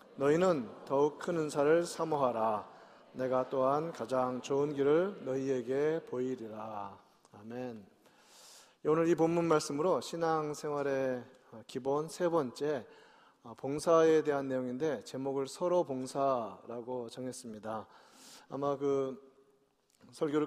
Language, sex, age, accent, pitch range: Korean, male, 40-59, native, 130-170 Hz